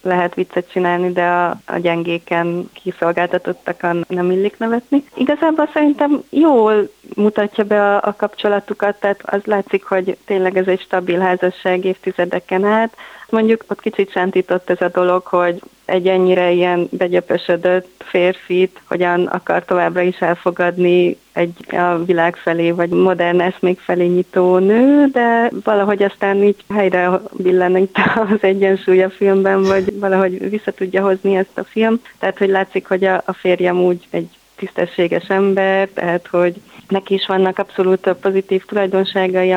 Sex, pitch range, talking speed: female, 175-195 Hz, 140 wpm